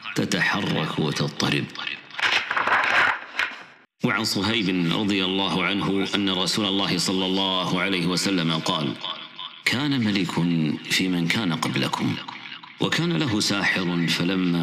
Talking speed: 105 wpm